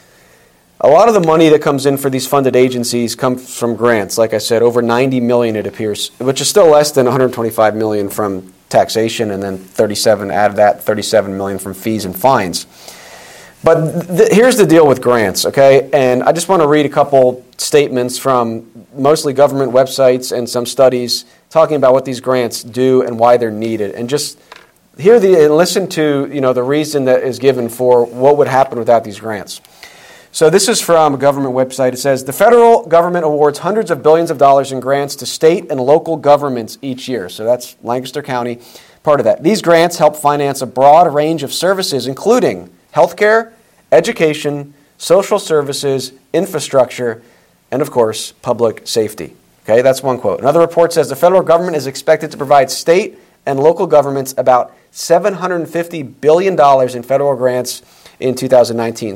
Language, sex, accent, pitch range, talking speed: English, male, American, 120-150 Hz, 185 wpm